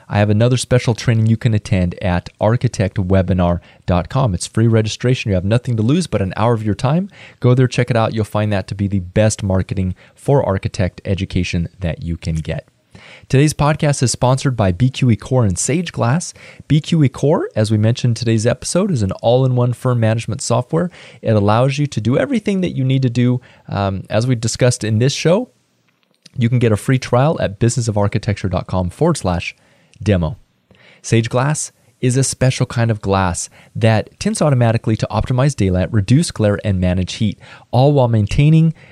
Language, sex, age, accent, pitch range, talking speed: English, male, 30-49, American, 100-135 Hz, 180 wpm